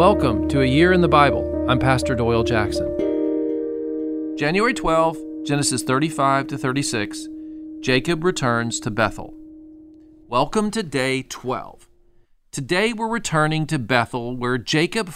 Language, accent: English, American